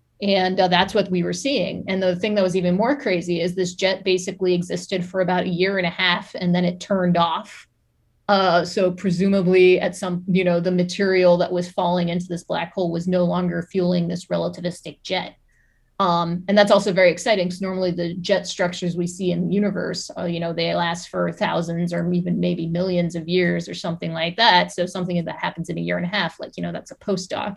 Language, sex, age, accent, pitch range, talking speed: English, female, 30-49, American, 170-190 Hz, 225 wpm